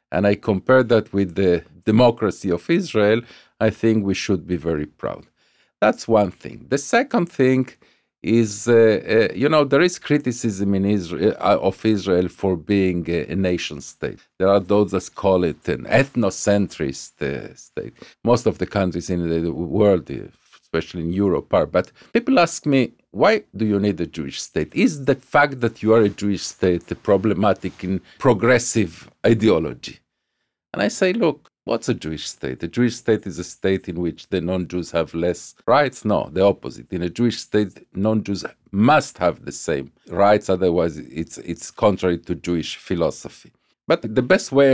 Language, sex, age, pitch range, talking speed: English, male, 50-69, 90-115 Hz, 175 wpm